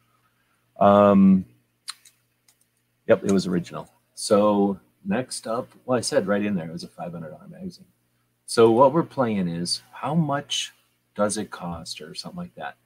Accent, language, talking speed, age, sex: American, English, 155 wpm, 40-59, male